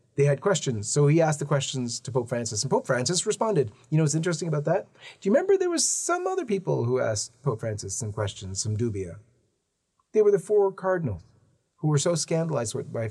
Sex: male